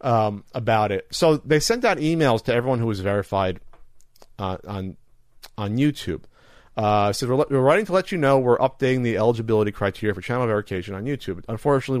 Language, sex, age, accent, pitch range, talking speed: English, male, 40-59, American, 100-135 Hz, 190 wpm